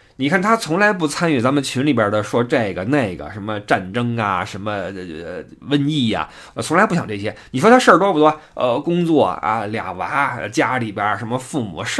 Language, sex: Chinese, male